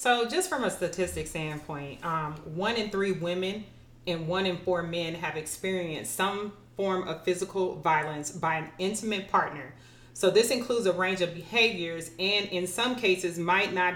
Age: 30-49